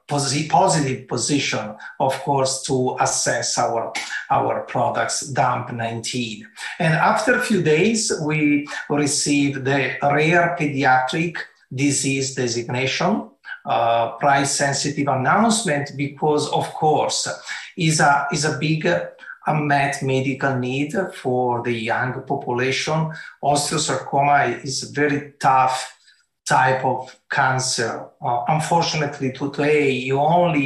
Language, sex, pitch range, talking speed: English, male, 130-155 Hz, 105 wpm